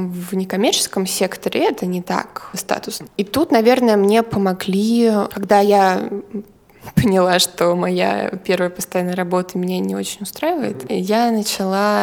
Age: 20-39